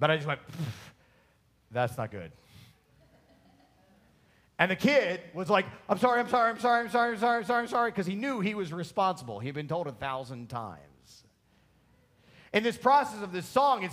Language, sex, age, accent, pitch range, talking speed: English, male, 40-59, American, 135-205 Hz, 190 wpm